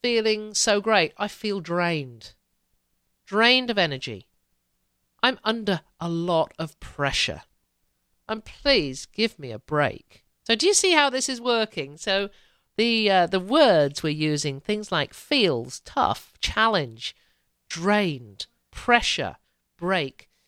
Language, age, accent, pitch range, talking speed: English, 50-69, British, 160-230 Hz, 130 wpm